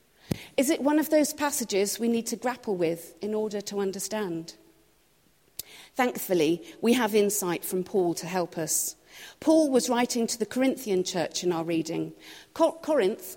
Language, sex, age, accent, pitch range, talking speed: English, female, 40-59, British, 190-250 Hz, 155 wpm